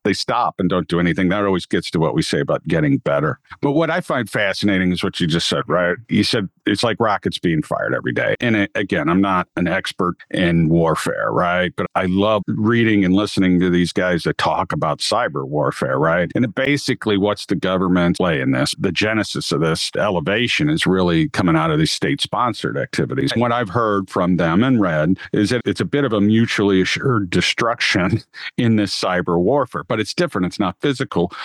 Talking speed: 205 wpm